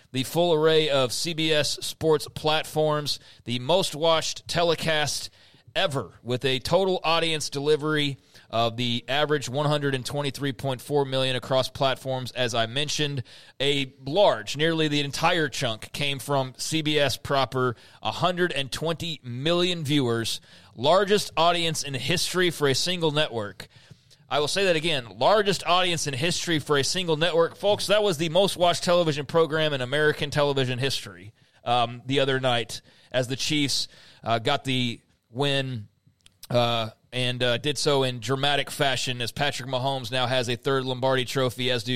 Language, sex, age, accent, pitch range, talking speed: English, male, 30-49, American, 125-160 Hz, 145 wpm